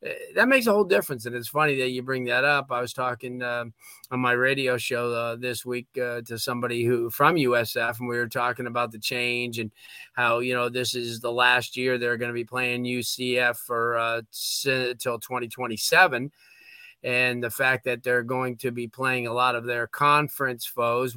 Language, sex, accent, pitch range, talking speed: English, male, American, 120-135 Hz, 200 wpm